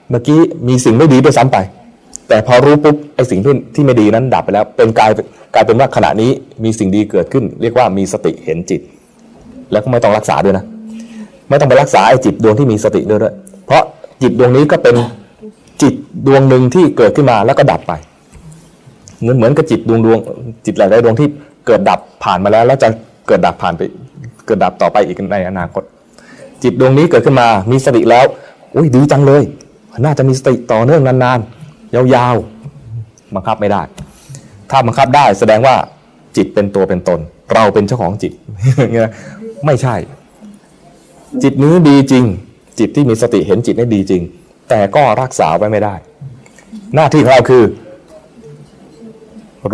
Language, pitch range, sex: Thai, 110-145 Hz, male